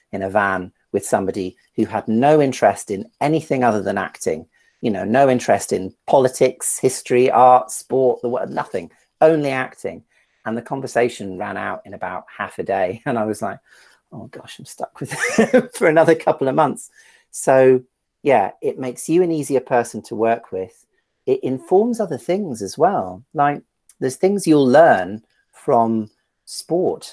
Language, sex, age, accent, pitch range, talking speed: Italian, male, 40-59, British, 110-145 Hz, 170 wpm